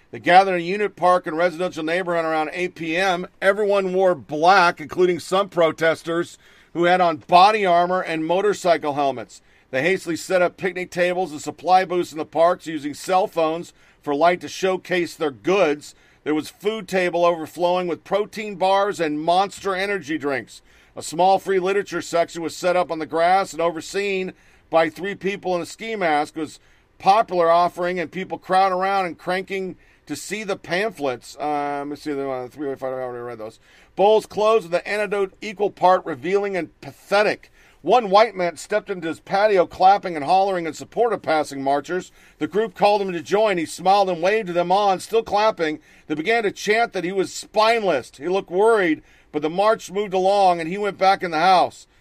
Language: English